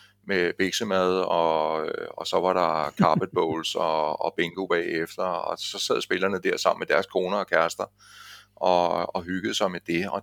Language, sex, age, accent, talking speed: Danish, male, 30-49, native, 180 wpm